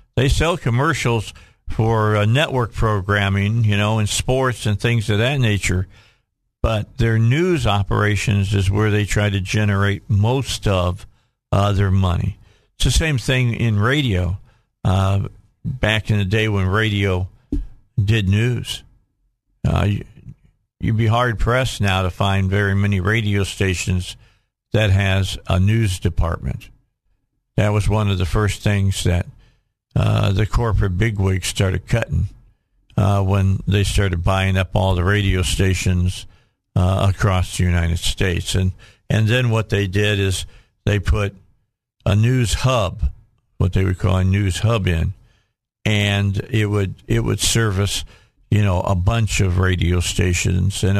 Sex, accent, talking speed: male, American, 145 wpm